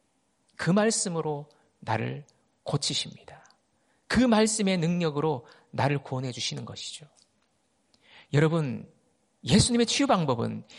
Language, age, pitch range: Korean, 40-59, 155-230 Hz